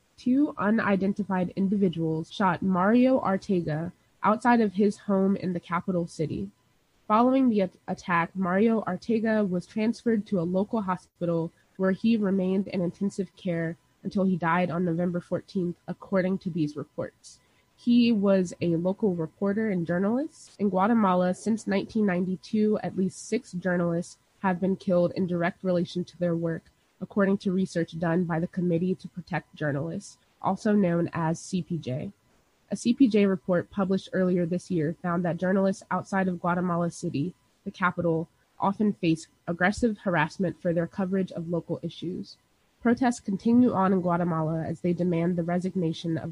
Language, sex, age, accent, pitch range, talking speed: English, female, 20-39, American, 170-200 Hz, 150 wpm